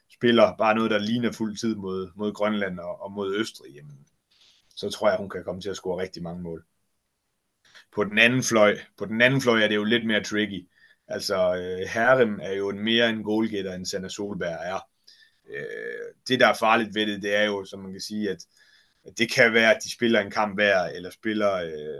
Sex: male